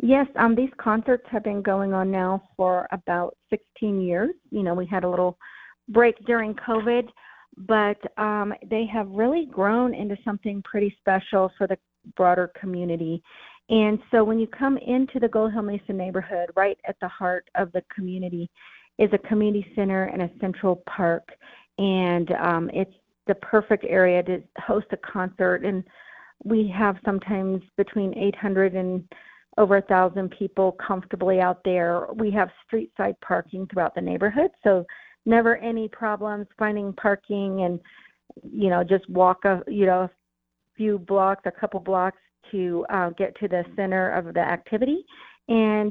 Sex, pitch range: female, 185-220 Hz